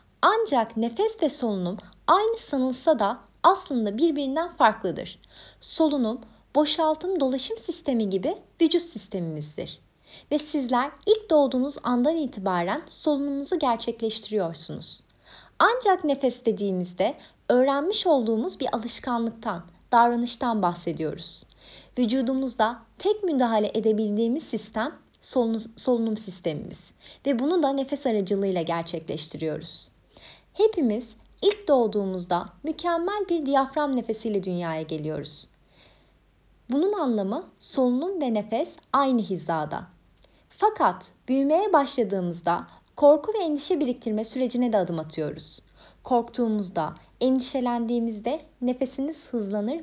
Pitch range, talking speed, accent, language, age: 205-295 Hz, 95 wpm, Turkish, English, 30-49